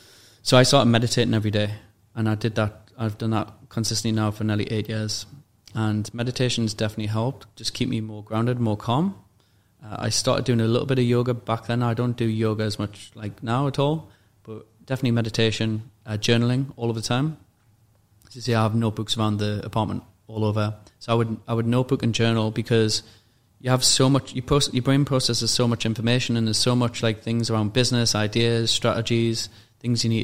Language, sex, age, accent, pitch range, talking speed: English, male, 20-39, British, 105-120 Hz, 210 wpm